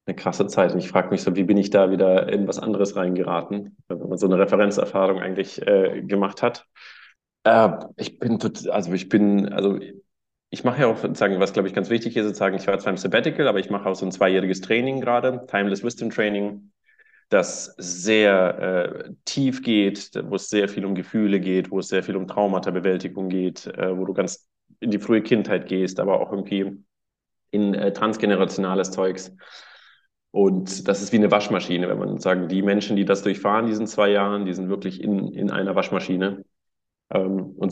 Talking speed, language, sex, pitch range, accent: 195 wpm, German, male, 95-105 Hz, German